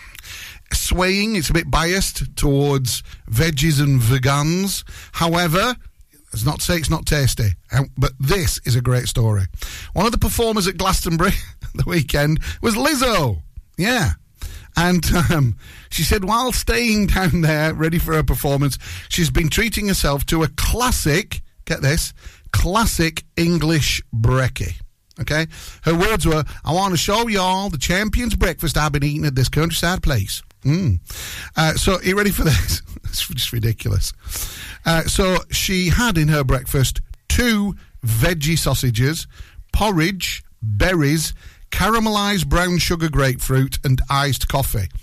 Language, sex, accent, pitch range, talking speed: English, male, British, 115-175 Hz, 145 wpm